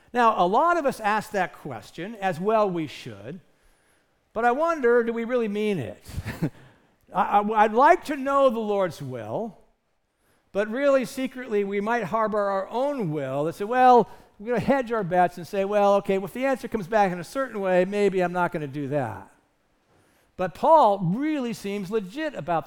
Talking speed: 190 wpm